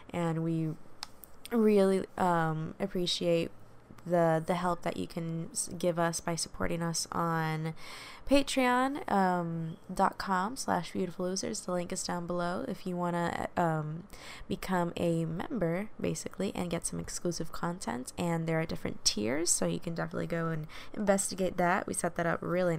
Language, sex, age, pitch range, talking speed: English, female, 10-29, 165-195 Hz, 155 wpm